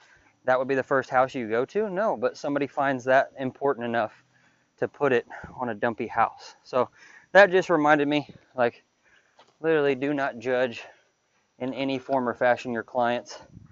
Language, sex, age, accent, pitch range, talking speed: English, male, 20-39, American, 120-140 Hz, 170 wpm